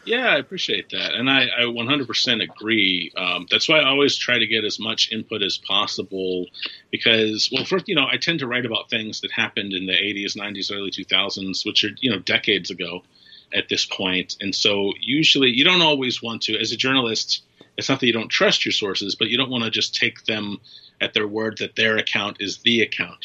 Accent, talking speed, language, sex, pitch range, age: American, 220 wpm, English, male, 100-120 Hz, 30-49